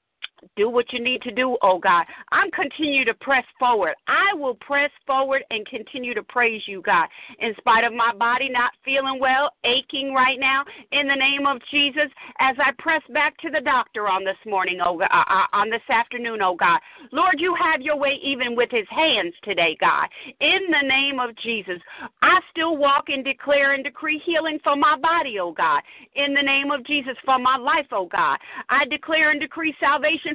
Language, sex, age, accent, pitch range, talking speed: English, female, 50-69, American, 265-325 Hz, 205 wpm